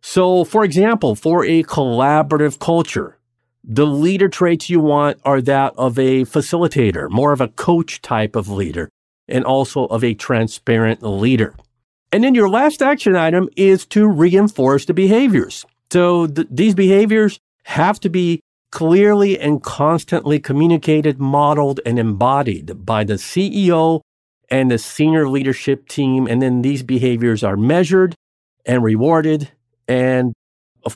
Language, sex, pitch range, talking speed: English, male, 120-170 Hz, 140 wpm